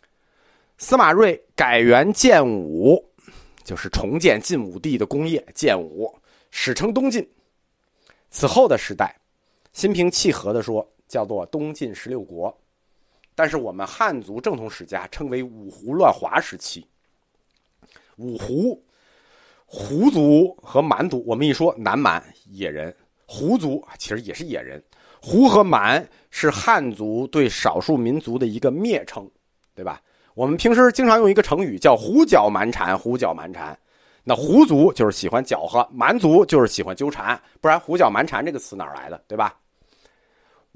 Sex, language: male, Chinese